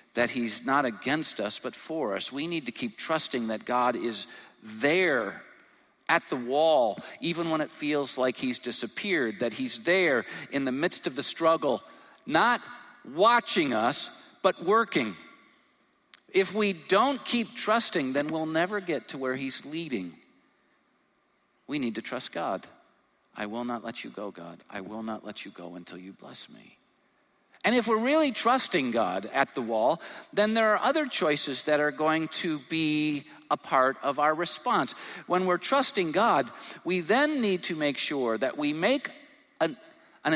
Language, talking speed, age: English, 170 wpm, 50-69